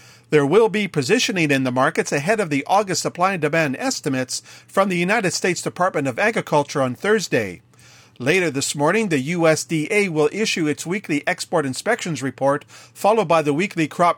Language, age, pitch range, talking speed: English, 50-69, 140-195 Hz, 175 wpm